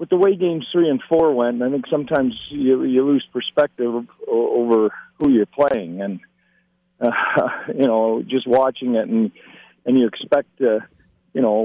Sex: male